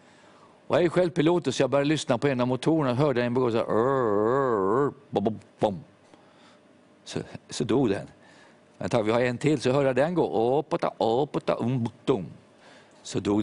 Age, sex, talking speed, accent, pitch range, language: 50-69, male, 190 wpm, native, 110-140 Hz, Swedish